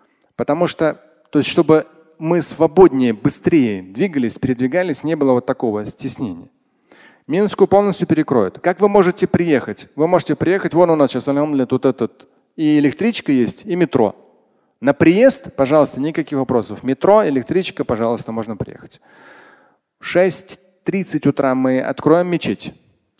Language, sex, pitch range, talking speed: Russian, male, 135-175 Hz, 140 wpm